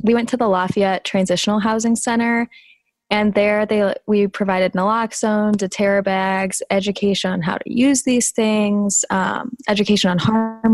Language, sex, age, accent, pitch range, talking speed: English, female, 10-29, American, 185-210 Hz, 150 wpm